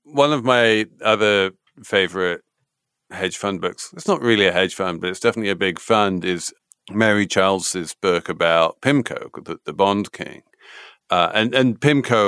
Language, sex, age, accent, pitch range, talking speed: English, male, 50-69, British, 95-125 Hz, 165 wpm